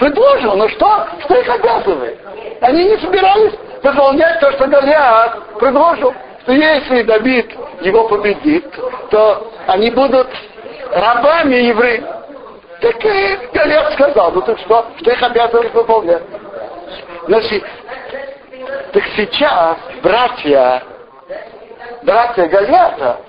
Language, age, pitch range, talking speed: Russian, 60-79, 225-360 Hz, 105 wpm